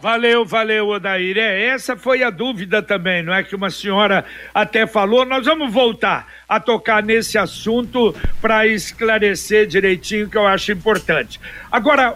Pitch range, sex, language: 210-260 Hz, male, Portuguese